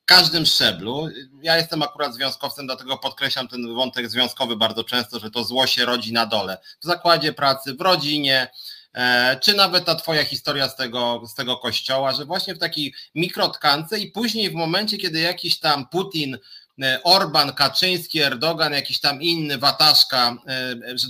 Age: 30-49